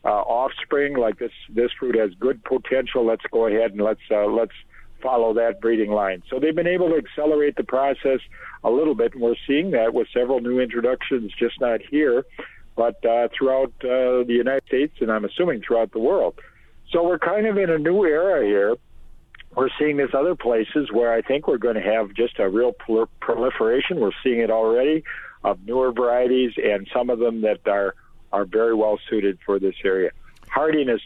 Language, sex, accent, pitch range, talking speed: English, male, American, 110-135 Hz, 195 wpm